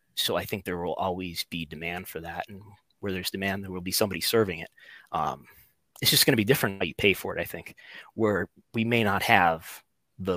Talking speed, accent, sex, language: 230 wpm, American, male, English